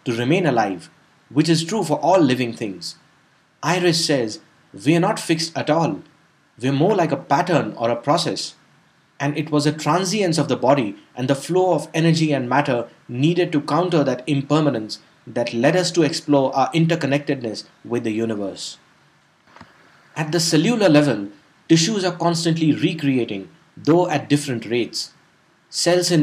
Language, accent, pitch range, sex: English, Indian, 130-165 Hz, male